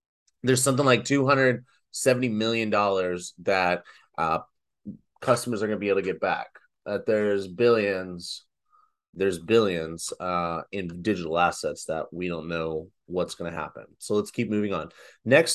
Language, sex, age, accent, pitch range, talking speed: English, male, 30-49, American, 100-125 Hz, 165 wpm